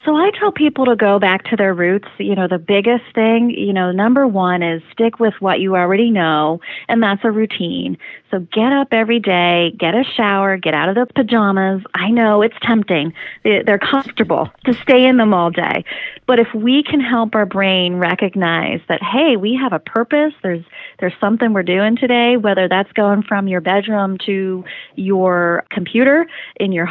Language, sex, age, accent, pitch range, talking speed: English, female, 30-49, American, 180-230 Hz, 190 wpm